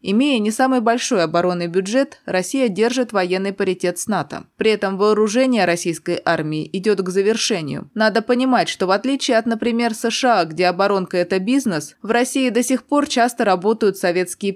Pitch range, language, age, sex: 185-240 Hz, Russian, 20-39, female